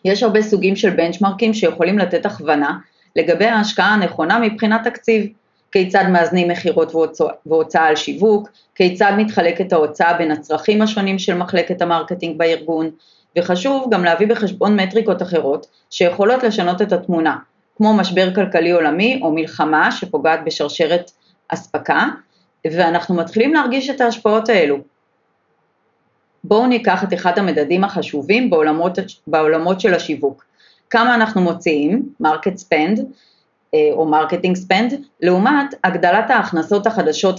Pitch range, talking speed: 165-215 Hz, 120 wpm